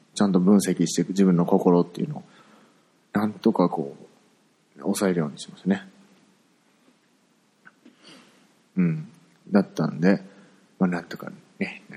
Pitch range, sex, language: 85-135 Hz, male, Japanese